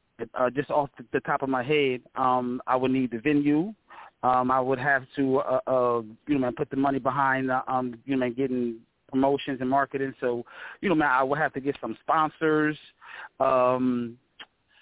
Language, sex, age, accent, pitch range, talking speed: English, male, 30-49, American, 125-140 Hz, 200 wpm